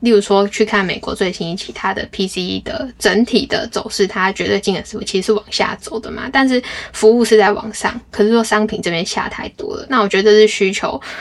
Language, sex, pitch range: Chinese, female, 200-230 Hz